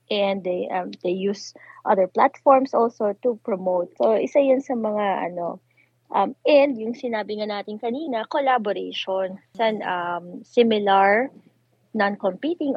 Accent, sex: native, female